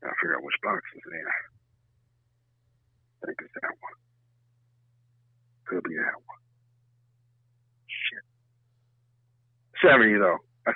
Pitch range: 120-150 Hz